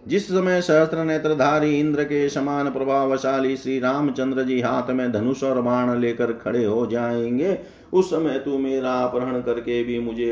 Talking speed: 165 wpm